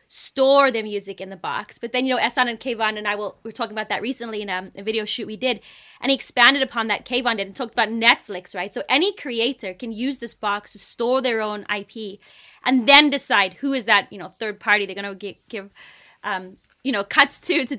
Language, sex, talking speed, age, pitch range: English, female, 225 wpm, 20-39, 205-250 Hz